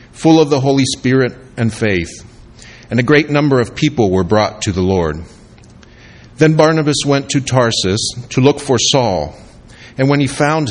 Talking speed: 175 wpm